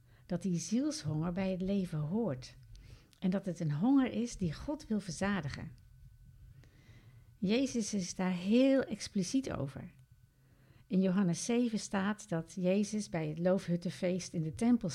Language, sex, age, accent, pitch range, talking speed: Dutch, female, 60-79, Dutch, 130-210 Hz, 140 wpm